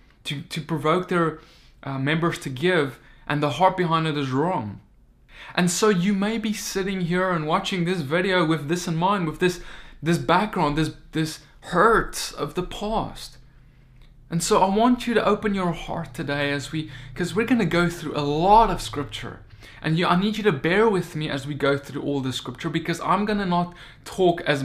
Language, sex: English, male